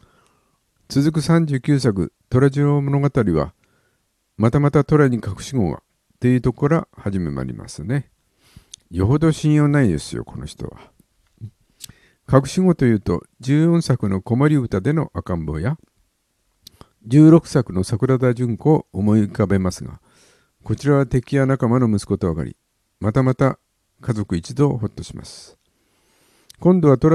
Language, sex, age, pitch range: Japanese, male, 50-69, 105-135 Hz